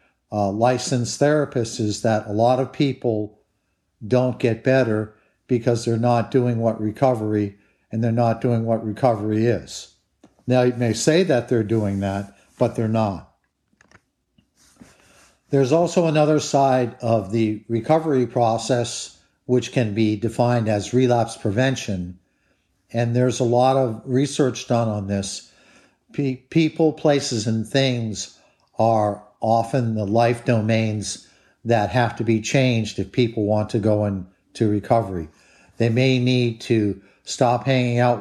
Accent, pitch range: American, 110-125 Hz